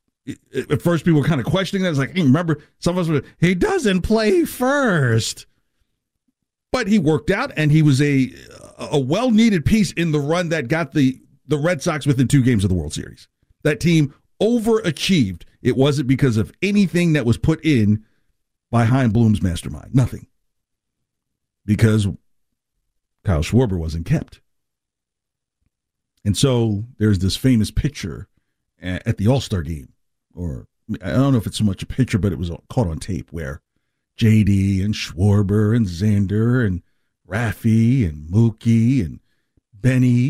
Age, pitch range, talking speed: 50-69, 110-170 Hz, 165 wpm